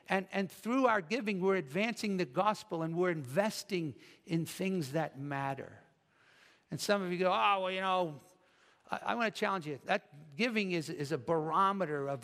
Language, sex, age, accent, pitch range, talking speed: English, male, 60-79, American, 160-200 Hz, 185 wpm